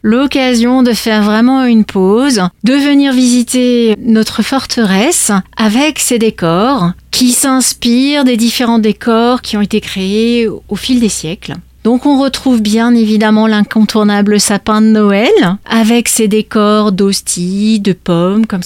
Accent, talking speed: French, 140 wpm